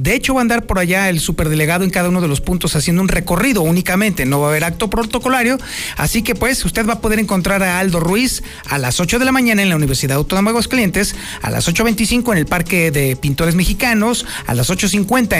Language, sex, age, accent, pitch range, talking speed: Spanish, male, 40-59, Mexican, 160-220 Hz, 240 wpm